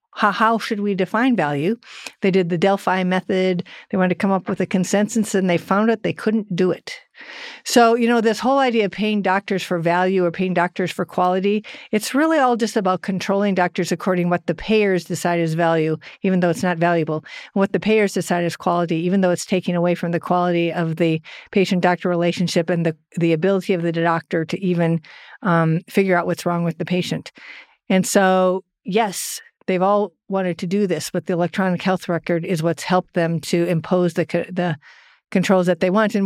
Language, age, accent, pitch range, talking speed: English, 50-69, American, 175-210 Hz, 210 wpm